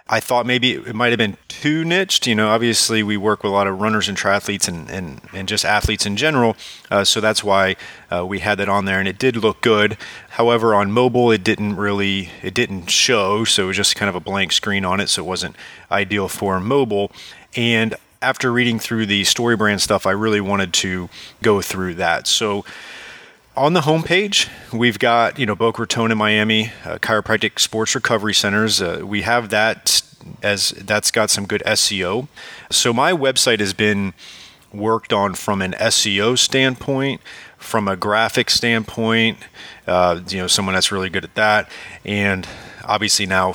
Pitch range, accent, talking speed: 100-115 Hz, American, 190 wpm